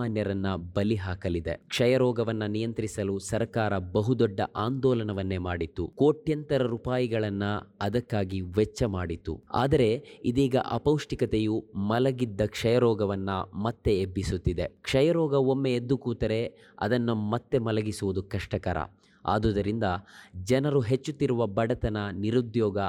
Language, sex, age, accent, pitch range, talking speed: Kannada, male, 20-39, native, 100-125 Hz, 95 wpm